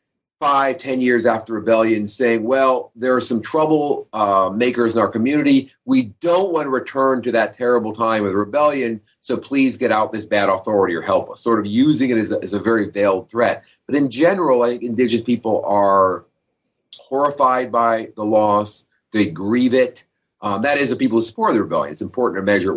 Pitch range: 105-130 Hz